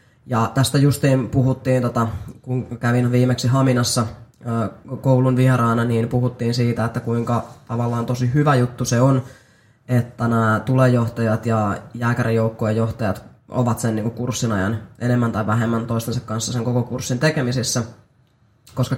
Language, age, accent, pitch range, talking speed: Finnish, 20-39, native, 115-130 Hz, 130 wpm